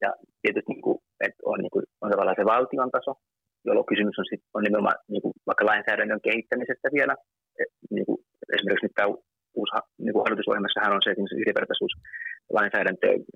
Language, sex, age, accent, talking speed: Finnish, male, 30-49, native, 125 wpm